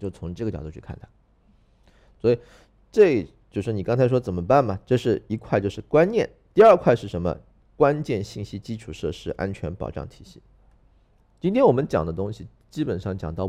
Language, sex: Chinese, male